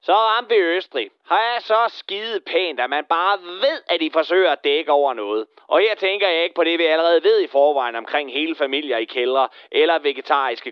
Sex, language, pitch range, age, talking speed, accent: male, Danish, 155-245 Hz, 30-49, 220 wpm, native